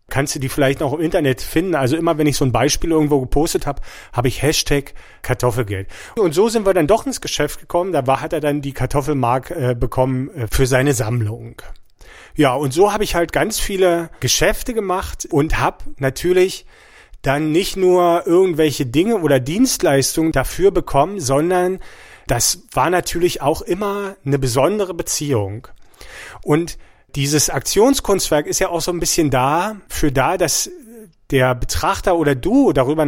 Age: 40-59